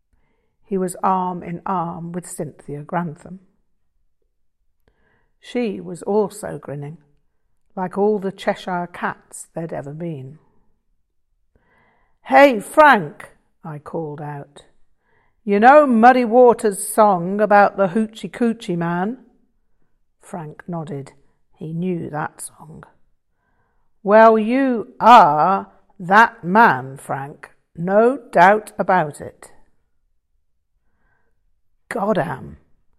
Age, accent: 60-79, British